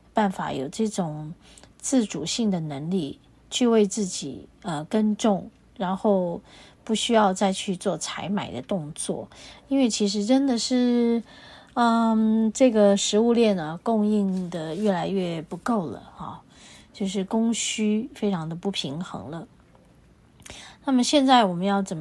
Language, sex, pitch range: Chinese, female, 175-225 Hz